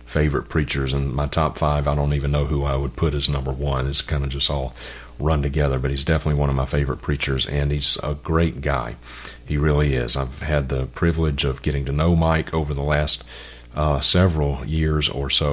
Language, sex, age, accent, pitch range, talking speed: English, male, 40-59, American, 70-80 Hz, 220 wpm